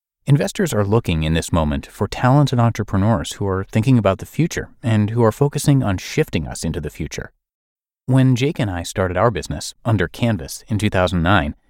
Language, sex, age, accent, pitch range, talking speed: English, male, 30-49, American, 85-120 Hz, 185 wpm